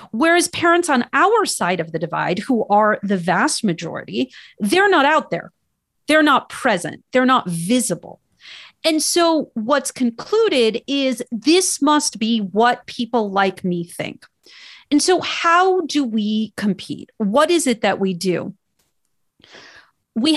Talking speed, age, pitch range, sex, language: 145 wpm, 40-59, 205-280 Hz, female, English